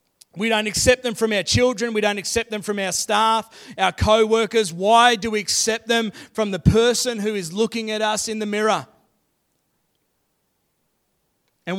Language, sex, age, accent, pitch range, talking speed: English, male, 30-49, Australian, 205-245 Hz, 170 wpm